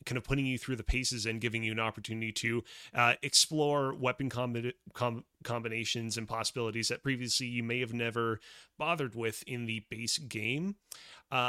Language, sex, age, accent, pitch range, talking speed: English, male, 30-49, American, 115-145 Hz, 165 wpm